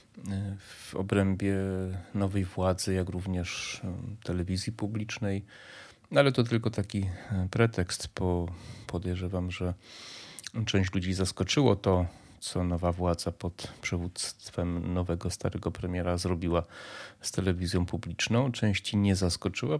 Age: 30-49